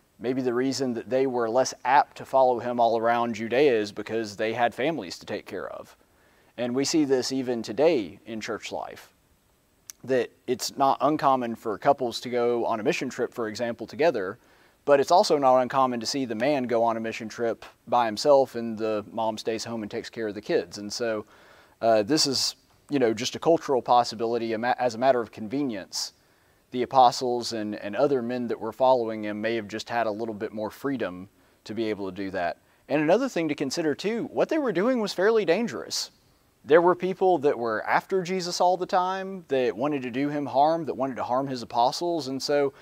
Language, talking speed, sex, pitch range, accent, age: English, 215 wpm, male, 115-145 Hz, American, 30-49